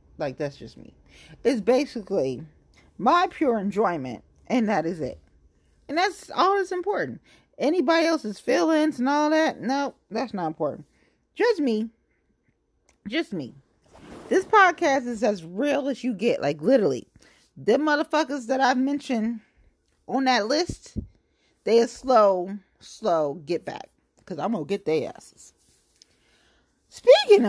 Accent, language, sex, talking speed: American, English, female, 140 wpm